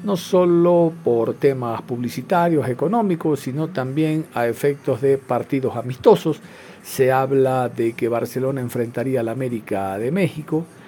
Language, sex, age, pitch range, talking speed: Spanish, male, 50-69, 125-170 Hz, 130 wpm